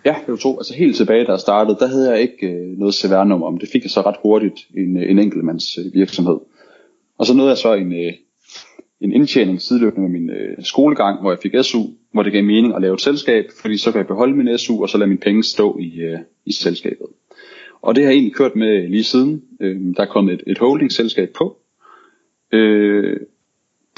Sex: male